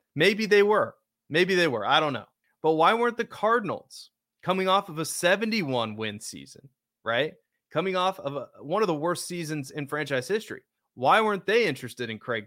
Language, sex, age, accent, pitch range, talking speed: English, male, 30-49, American, 130-175 Hz, 185 wpm